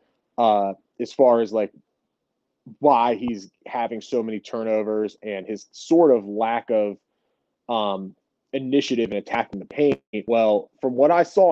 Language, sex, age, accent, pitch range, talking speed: English, male, 30-49, American, 110-135 Hz, 145 wpm